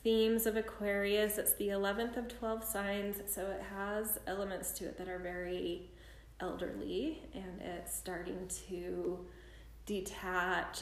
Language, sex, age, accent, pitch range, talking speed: English, female, 20-39, American, 180-220 Hz, 135 wpm